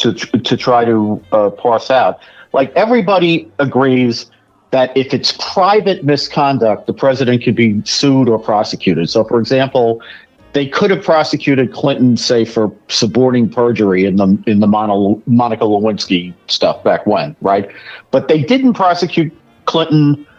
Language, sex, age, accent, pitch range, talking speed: English, male, 50-69, American, 115-150 Hz, 145 wpm